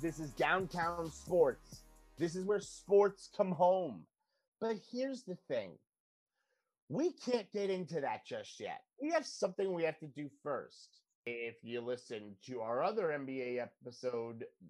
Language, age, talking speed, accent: English, 30-49, 150 wpm, American